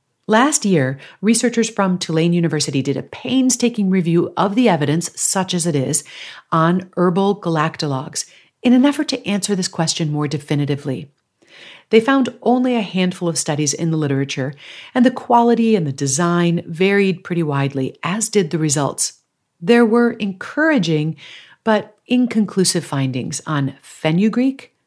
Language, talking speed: English, 145 wpm